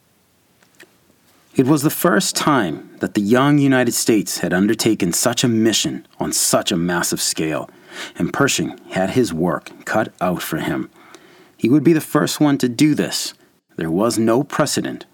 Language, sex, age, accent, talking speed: English, male, 30-49, American, 165 wpm